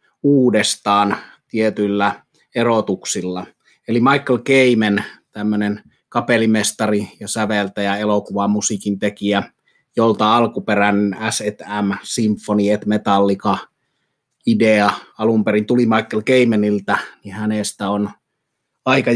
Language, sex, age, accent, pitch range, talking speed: Finnish, male, 30-49, native, 105-115 Hz, 90 wpm